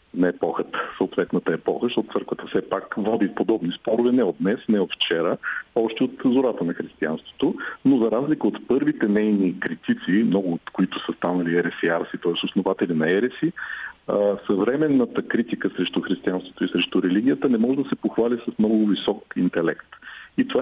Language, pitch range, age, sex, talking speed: Bulgarian, 90-115 Hz, 50-69, male, 165 wpm